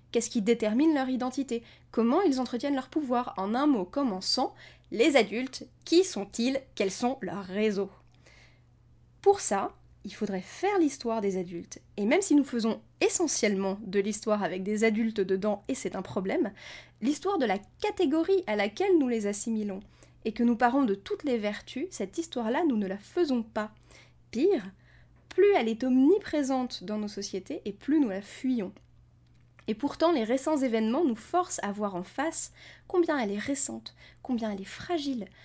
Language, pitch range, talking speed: French, 205-290 Hz, 175 wpm